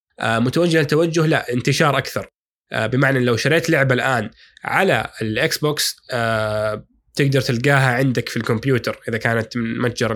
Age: 20-39